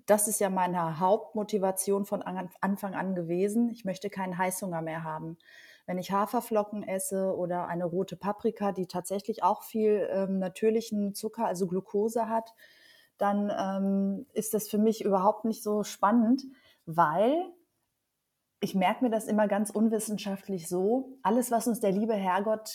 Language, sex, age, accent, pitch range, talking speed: German, female, 30-49, German, 190-230 Hz, 150 wpm